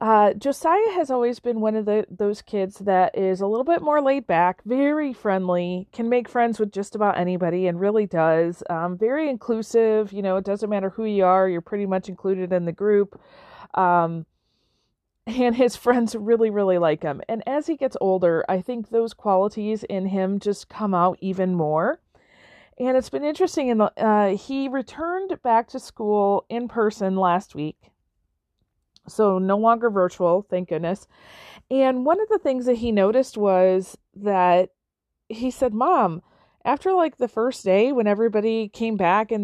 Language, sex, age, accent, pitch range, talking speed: English, female, 40-59, American, 185-245 Hz, 175 wpm